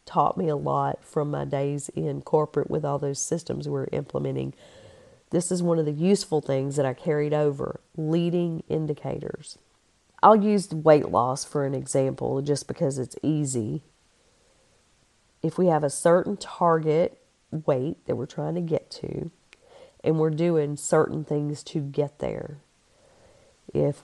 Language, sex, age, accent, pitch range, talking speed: English, female, 40-59, American, 135-165 Hz, 150 wpm